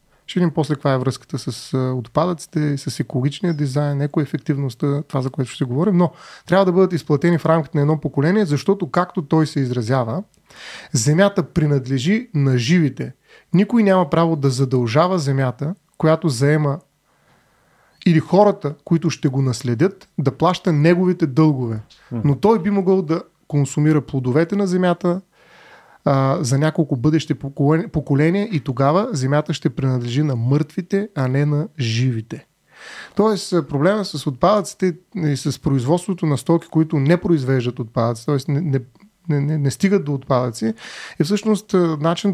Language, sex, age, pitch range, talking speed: Bulgarian, male, 30-49, 140-170 Hz, 145 wpm